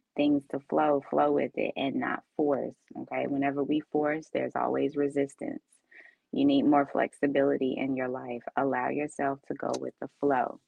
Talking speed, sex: 170 wpm, female